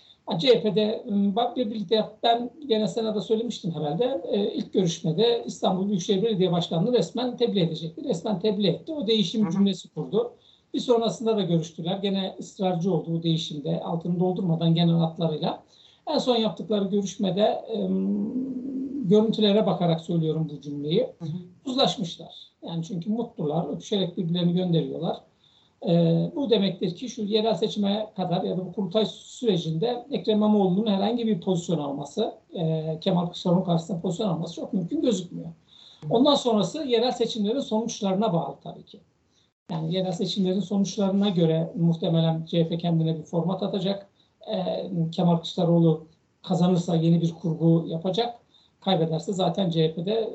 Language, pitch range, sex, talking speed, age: Turkish, 170-220 Hz, male, 130 wpm, 60-79